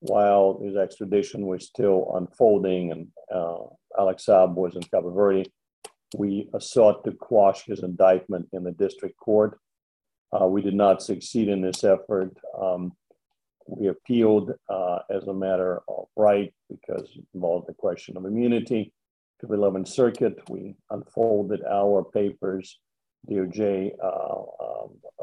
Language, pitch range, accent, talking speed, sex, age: English, 90-105 Hz, American, 135 wpm, male, 50-69